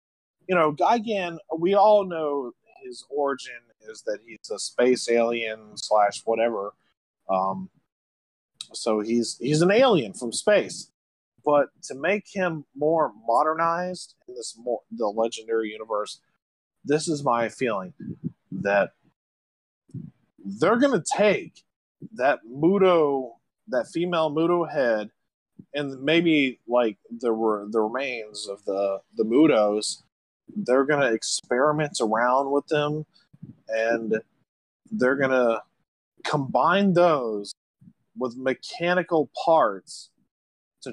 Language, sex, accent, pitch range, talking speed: English, male, American, 110-160 Hz, 115 wpm